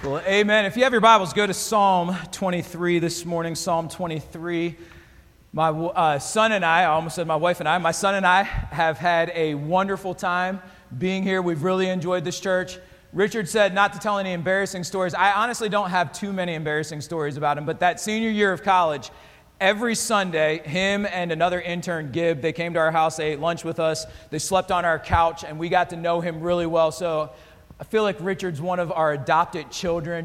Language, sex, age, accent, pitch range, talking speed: English, male, 40-59, American, 160-190 Hz, 210 wpm